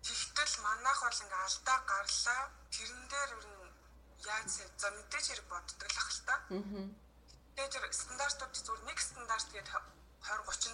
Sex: female